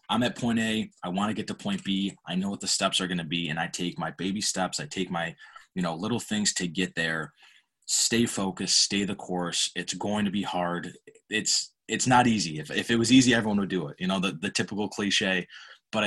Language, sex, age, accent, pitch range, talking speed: English, male, 20-39, American, 90-110 Hz, 245 wpm